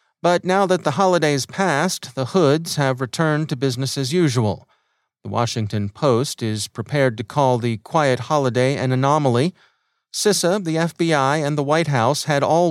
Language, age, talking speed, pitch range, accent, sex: English, 40-59, 165 wpm, 120-155 Hz, American, male